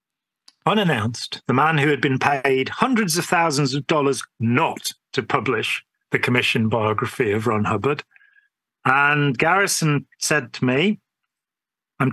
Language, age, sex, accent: English, 40-59, male, British